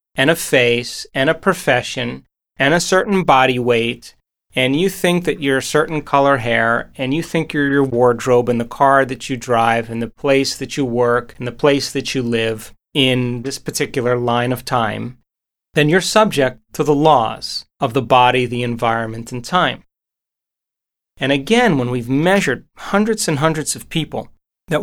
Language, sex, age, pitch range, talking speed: Swahili, male, 30-49, 125-155 Hz, 180 wpm